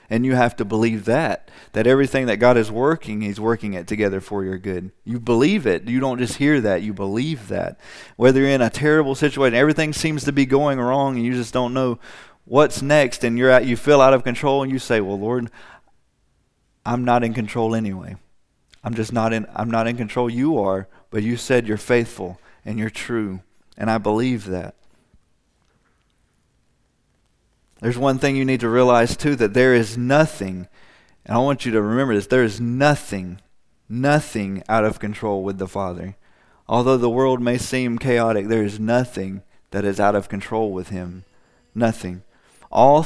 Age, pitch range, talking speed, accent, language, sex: 40-59, 100-130 Hz, 190 wpm, American, English, male